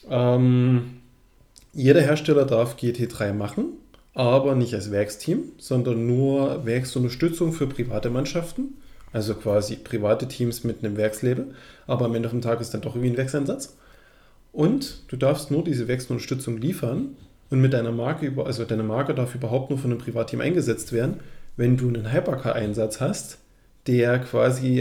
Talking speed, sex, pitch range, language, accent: 155 wpm, male, 115-140 Hz, German, German